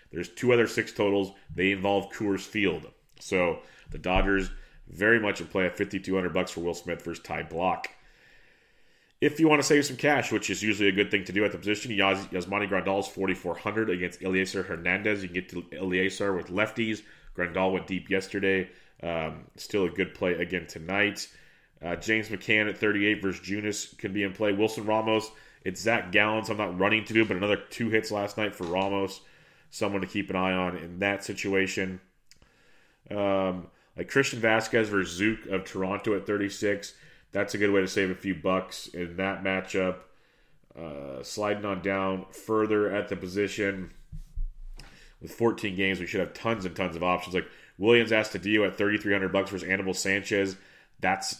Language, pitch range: English, 95-105 Hz